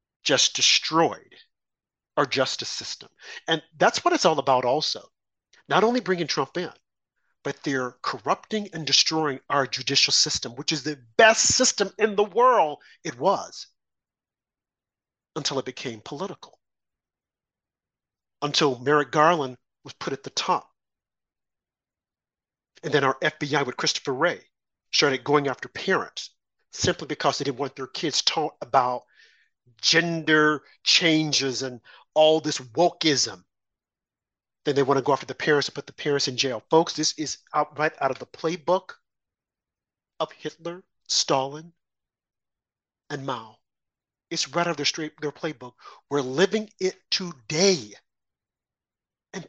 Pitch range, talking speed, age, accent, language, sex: 140-180 Hz, 140 wpm, 40-59, American, English, male